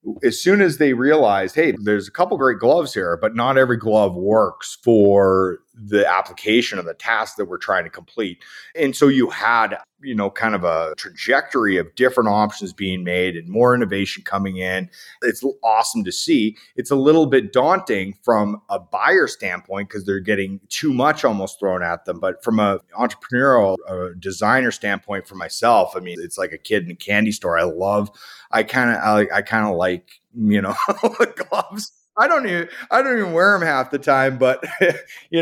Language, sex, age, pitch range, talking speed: English, male, 30-49, 100-130 Hz, 190 wpm